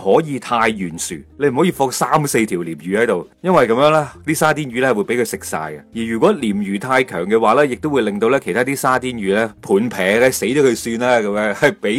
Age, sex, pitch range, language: 30-49, male, 110-165 Hz, Chinese